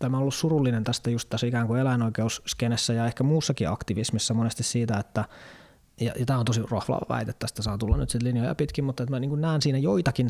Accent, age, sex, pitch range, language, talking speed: native, 20-39, male, 110-130 Hz, Finnish, 225 wpm